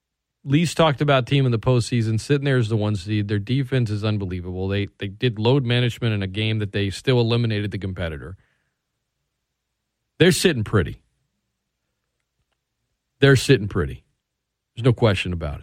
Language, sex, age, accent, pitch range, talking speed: English, male, 40-59, American, 105-155 Hz, 155 wpm